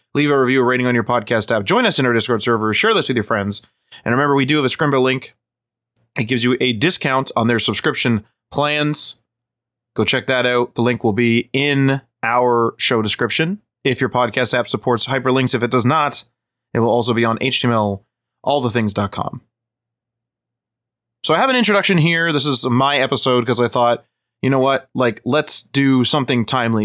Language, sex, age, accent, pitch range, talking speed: English, male, 20-39, American, 115-135 Hz, 190 wpm